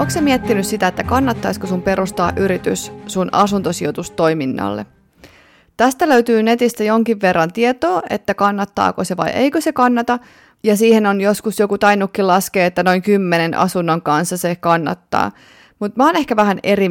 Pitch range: 180-210 Hz